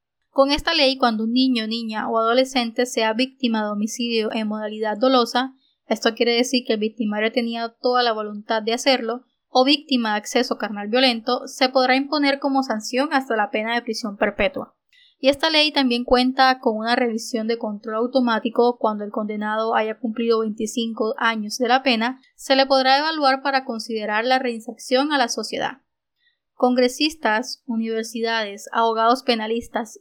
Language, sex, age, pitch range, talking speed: Spanish, female, 10-29, 225-260 Hz, 160 wpm